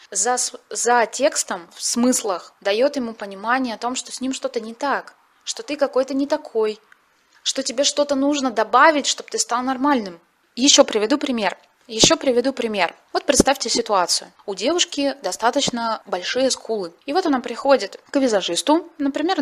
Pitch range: 215-275 Hz